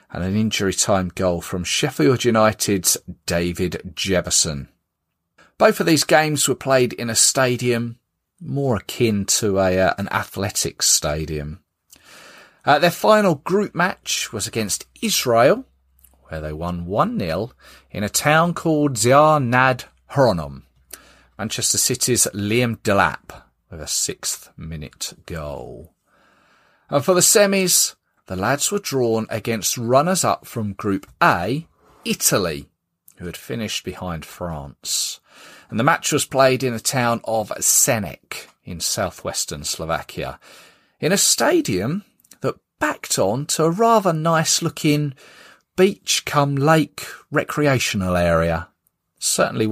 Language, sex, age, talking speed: English, male, 40-59, 120 wpm